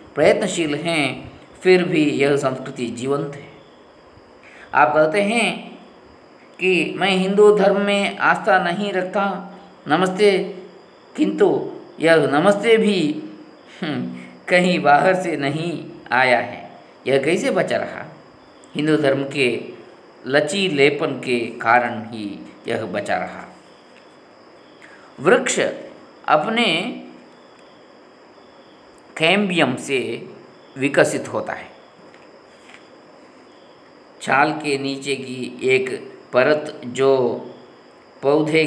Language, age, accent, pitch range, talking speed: Kannada, 50-69, native, 140-200 Hz, 90 wpm